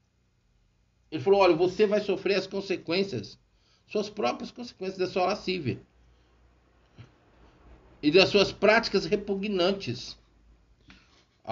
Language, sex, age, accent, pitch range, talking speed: Portuguese, male, 60-79, Brazilian, 115-185 Hz, 105 wpm